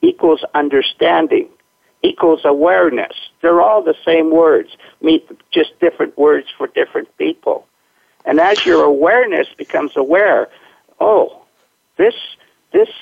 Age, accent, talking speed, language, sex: 60-79, American, 110 wpm, English, male